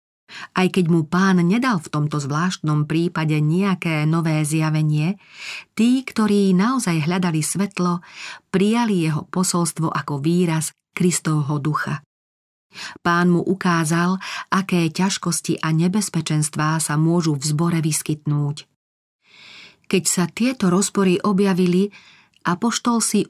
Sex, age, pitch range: female, 40-59, 155-185 Hz